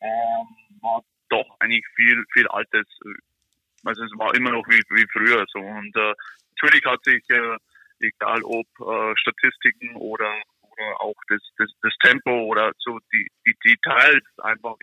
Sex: male